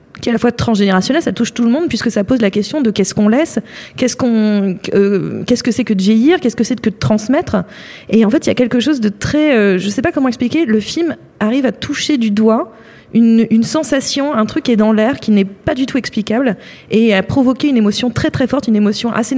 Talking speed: 260 wpm